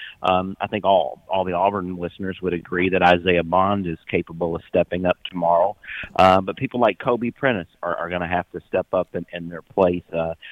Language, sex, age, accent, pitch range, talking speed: English, male, 40-59, American, 90-110 Hz, 215 wpm